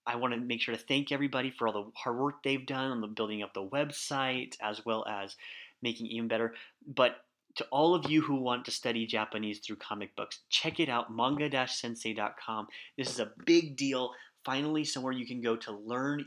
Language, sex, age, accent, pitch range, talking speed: English, male, 30-49, American, 115-140 Hz, 210 wpm